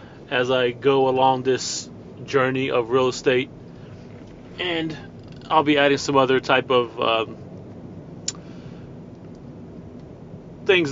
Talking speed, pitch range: 105 wpm, 120-130 Hz